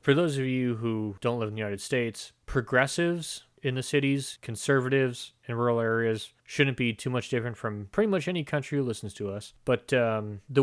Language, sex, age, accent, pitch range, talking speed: English, male, 30-49, American, 110-130 Hz, 205 wpm